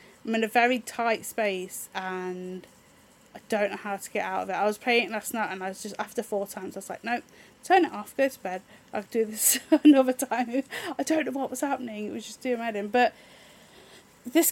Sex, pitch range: female, 190-245 Hz